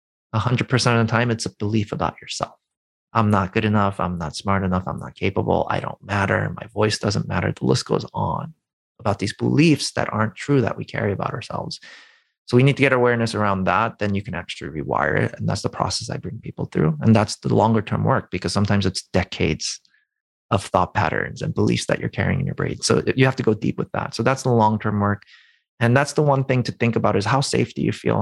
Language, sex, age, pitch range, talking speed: English, male, 30-49, 100-125 Hz, 240 wpm